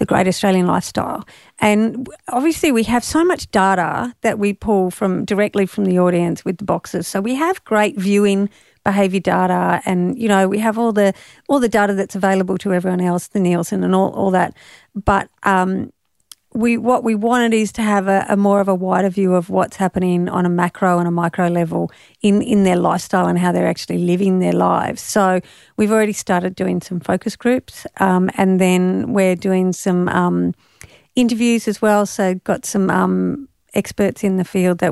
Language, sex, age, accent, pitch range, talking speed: English, female, 50-69, Australian, 175-205 Hz, 195 wpm